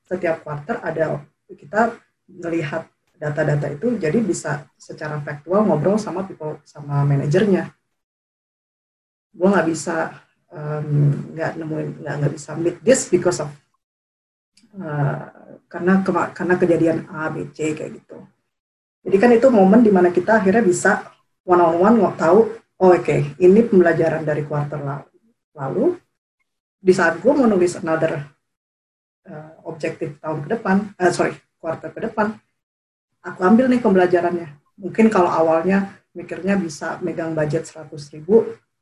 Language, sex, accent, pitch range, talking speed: Indonesian, female, native, 160-200 Hz, 135 wpm